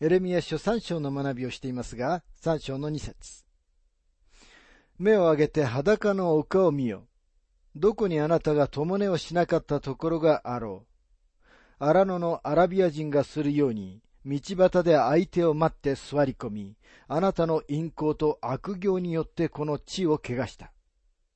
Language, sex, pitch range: Japanese, male, 120-180 Hz